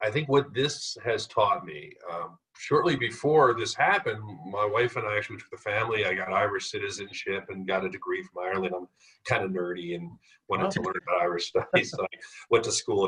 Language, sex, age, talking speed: English, male, 50-69, 215 wpm